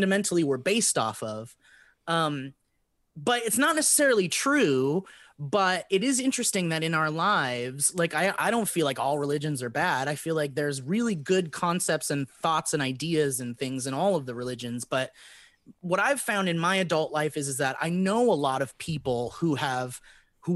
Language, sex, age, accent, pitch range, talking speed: English, male, 30-49, American, 135-180 Hz, 195 wpm